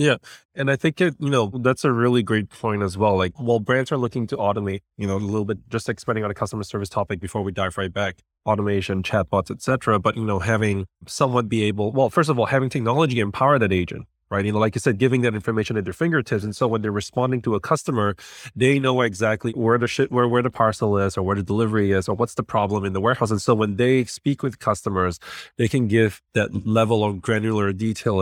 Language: English